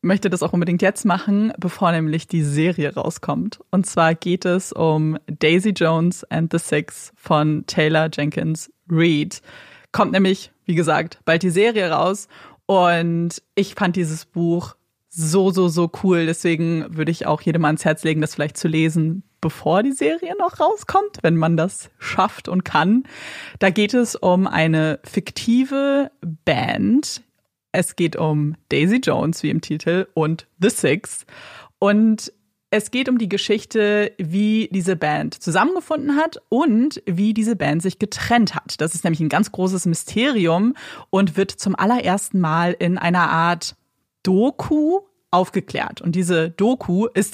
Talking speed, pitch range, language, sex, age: 155 wpm, 165-210 Hz, German, female, 20-39